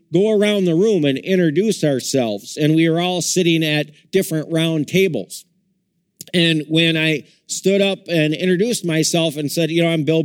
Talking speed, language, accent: 175 wpm, English, American